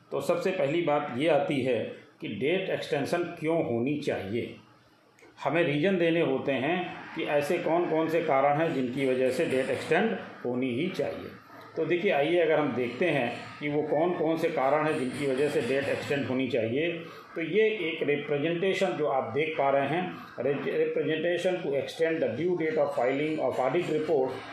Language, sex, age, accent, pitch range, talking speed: Hindi, male, 40-59, native, 145-175 Hz, 185 wpm